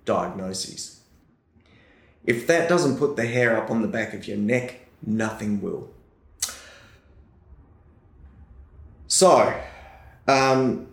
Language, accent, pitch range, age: English, Australian, 105-135 Hz, 20-39